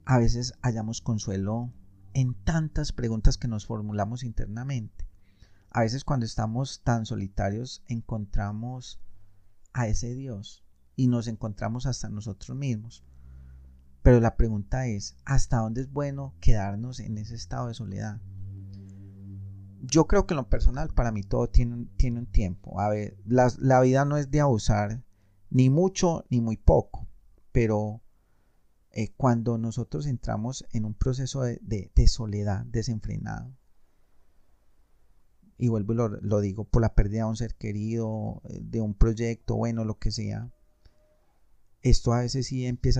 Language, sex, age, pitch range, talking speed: Spanish, male, 30-49, 105-130 Hz, 145 wpm